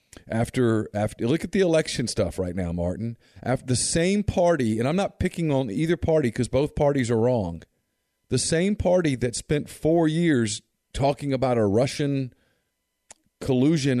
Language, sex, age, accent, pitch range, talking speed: English, male, 40-59, American, 110-150 Hz, 165 wpm